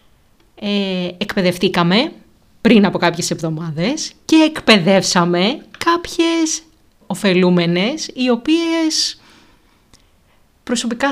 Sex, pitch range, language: female, 170-240 Hz, Greek